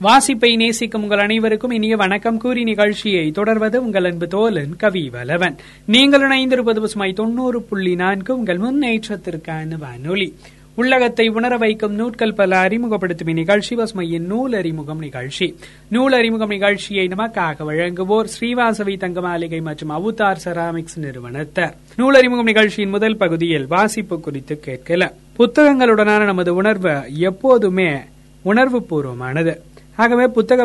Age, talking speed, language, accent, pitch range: 30-49, 105 wpm, Tamil, native, 170-225 Hz